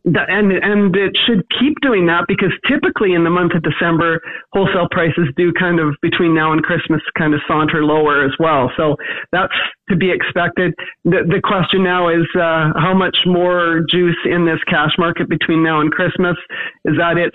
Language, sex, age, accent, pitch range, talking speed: English, male, 40-59, American, 160-185 Hz, 190 wpm